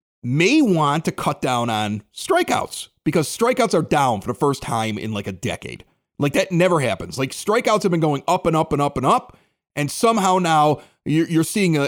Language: English